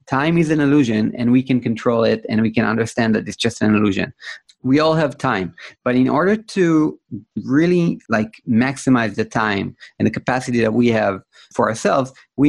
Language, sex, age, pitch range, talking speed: English, male, 30-49, 115-145 Hz, 190 wpm